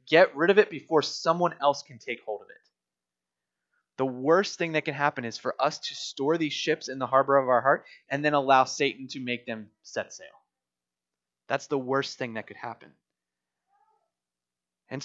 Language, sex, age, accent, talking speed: English, male, 20-39, American, 190 wpm